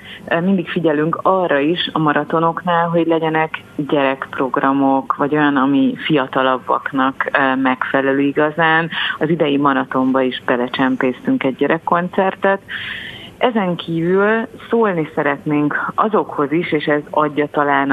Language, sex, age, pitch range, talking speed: Hungarian, female, 30-49, 140-160 Hz, 105 wpm